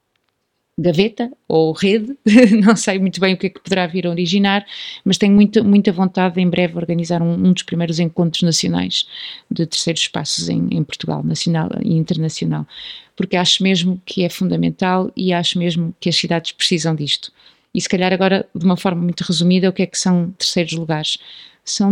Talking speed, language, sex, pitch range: 190 wpm, Portuguese, female, 170-200 Hz